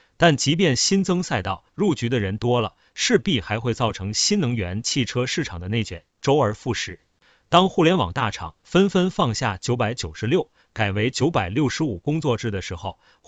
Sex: male